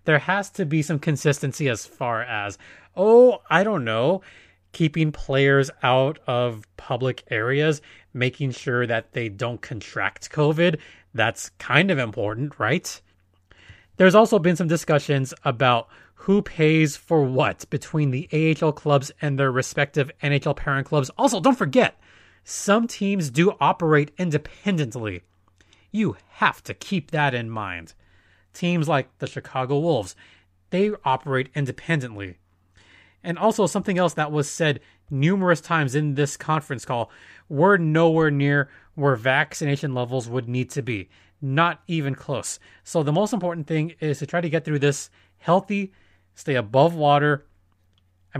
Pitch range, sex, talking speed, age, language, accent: 120-160 Hz, male, 145 wpm, 30-49, English, American